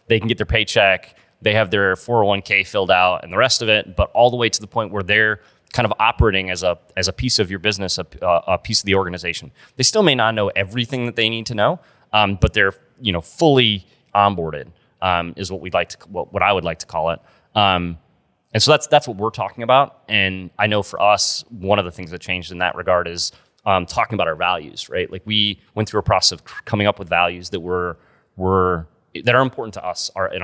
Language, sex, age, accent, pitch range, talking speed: English, male, 30-49, American, 90-110 Hz, 245 wpm